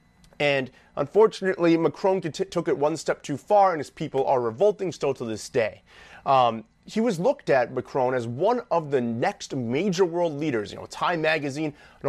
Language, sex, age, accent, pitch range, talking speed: English, male, 30-49, American, 145-200 Hz, 185 wpm